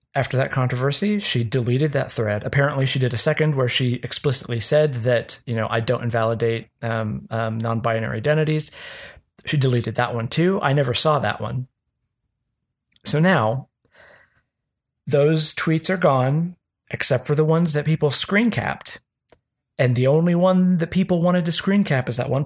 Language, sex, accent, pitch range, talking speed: English, male, American, 125-155 Hz, 170 wpm